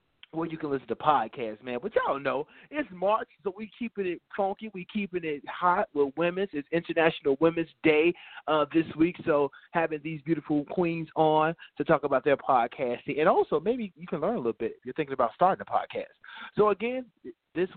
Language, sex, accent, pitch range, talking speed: English, male, American, 140-195 Hz, 205 wpm